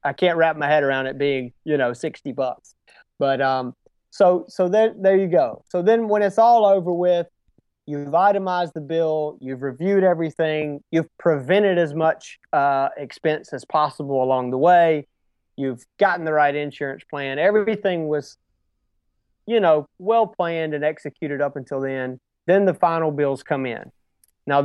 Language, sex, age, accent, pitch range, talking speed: English, male, 30-49, American, 135-175 Hz, 170 wpm